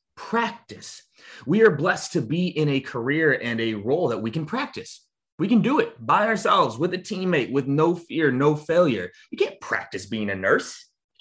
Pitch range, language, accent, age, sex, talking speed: 115-175 Hz, English, American, 30-49, male, 200 wpm